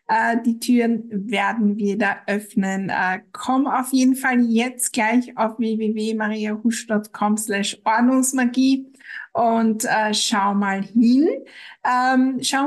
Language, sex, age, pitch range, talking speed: German, female, 60-79, 215-250 Hz, 95 wpm